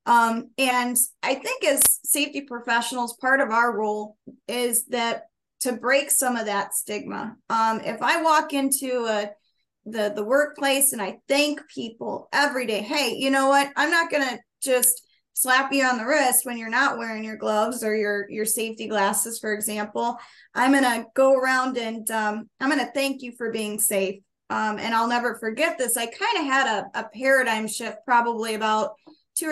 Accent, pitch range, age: American, 220-270 Hz, 20-39